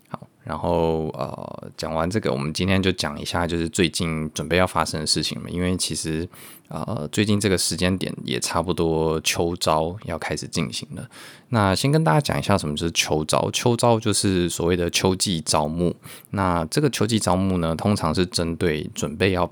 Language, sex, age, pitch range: Chinese, male, 20-39, 80-95 Hz